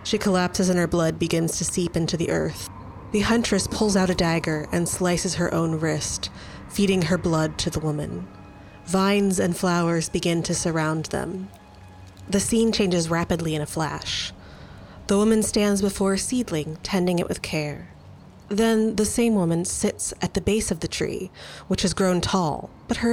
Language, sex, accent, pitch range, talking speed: English, female, American, 160-200 Hz, 180 wpm